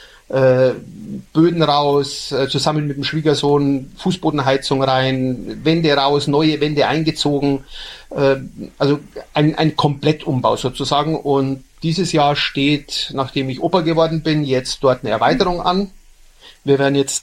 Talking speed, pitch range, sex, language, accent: 120 wpm, 135-165 Hz, male, German, German